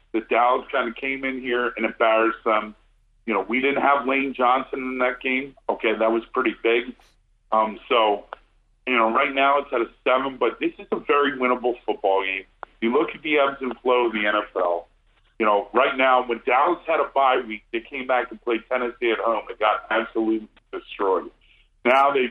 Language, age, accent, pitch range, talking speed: English, 40-59, American, 110-140 Hz, 205 wpm